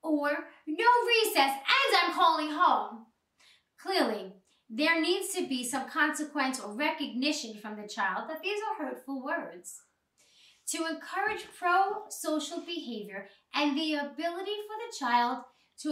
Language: English